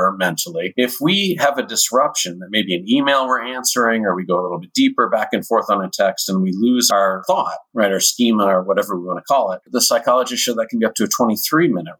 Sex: male